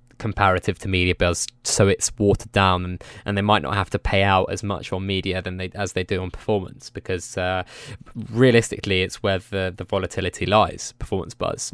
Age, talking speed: 20-39, 200 wpm